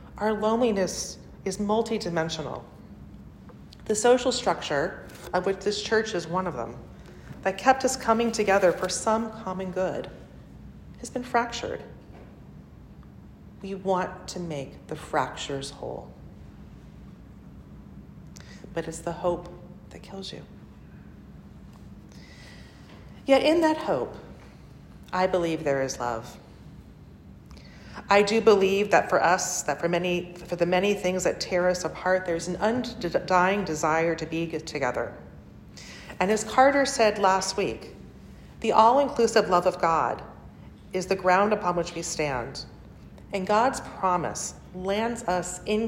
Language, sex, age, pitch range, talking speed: English, female, 40-59, 160-210 Hz, 130 wpm